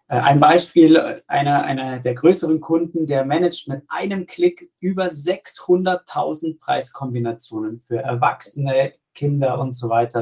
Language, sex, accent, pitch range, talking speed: German, male, German, 135-175 Hz, 125 wpm